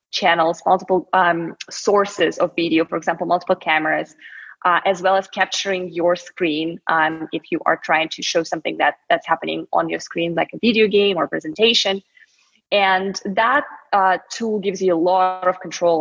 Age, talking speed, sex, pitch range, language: 20-39, 175 wpm, female, 170-205 Hz, English